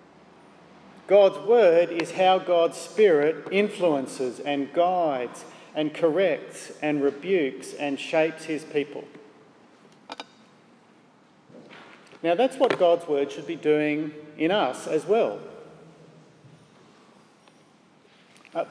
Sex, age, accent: male, 50-69, Australian